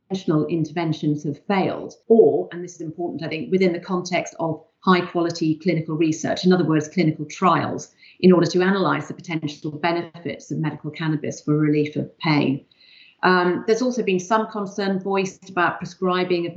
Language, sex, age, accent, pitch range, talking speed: English, female, 40-59, British, 160-190 Hz, 165 wpm